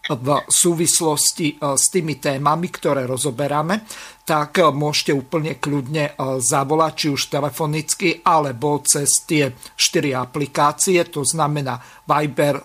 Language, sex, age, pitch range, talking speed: Slovak, male, 50-69, 145-175 Hz, 110 wpm